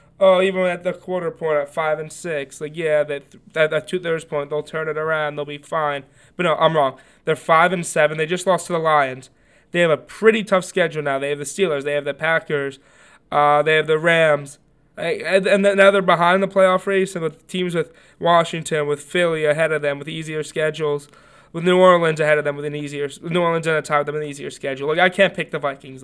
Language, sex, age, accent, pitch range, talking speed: English, male, 20-39, American, 145-175 Hz, 230 wpm